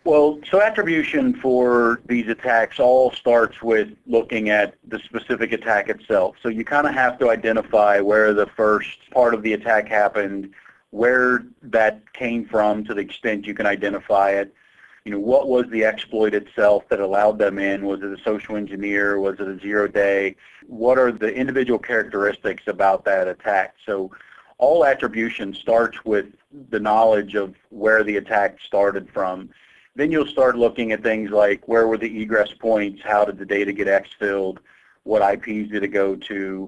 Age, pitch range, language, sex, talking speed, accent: 40-59, 100-120 Hz, English, male, 175 wpm, American